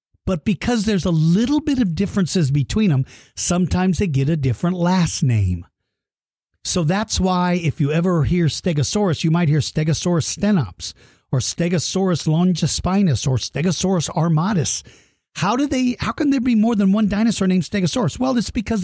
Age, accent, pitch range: 50-69, American, 140-200 Hz